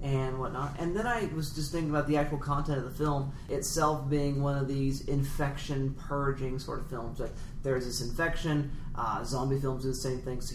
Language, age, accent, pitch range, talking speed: English, 30-49, American, 135-150 Hz, 215 wpm